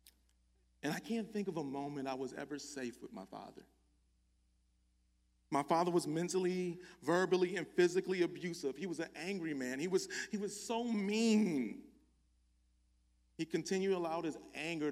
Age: 40-59